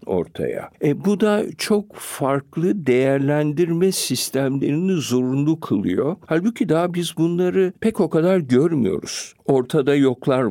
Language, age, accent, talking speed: Turkish, 60-79, native, 115 wpm